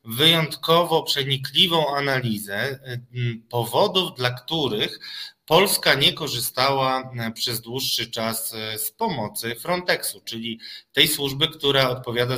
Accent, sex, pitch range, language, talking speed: native, male, 115-145 Hz, Polish, 95 wpm